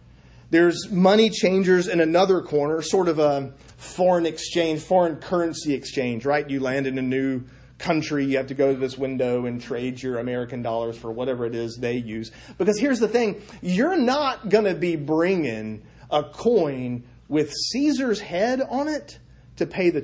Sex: male